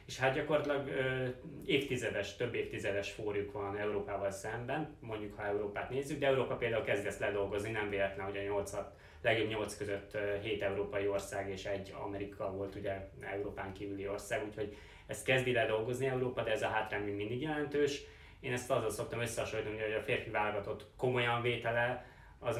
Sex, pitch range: male, 100-120 Hz